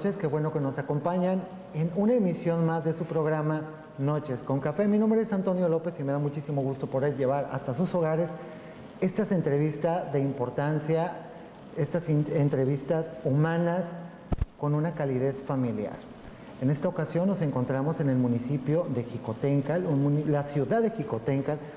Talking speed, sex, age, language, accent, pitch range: 155 wpm, male, 40-59, Spanish, Mexican, 135-165 Hz